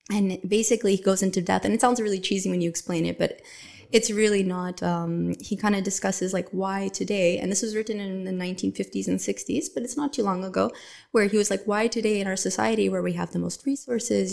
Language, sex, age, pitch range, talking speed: English, female, 20-39, 175-205 Hz, 240 wpm